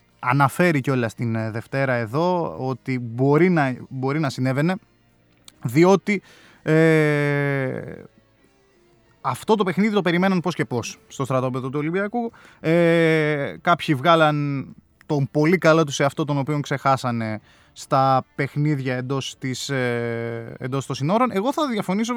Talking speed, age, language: 130 wpm, 20-39, Greek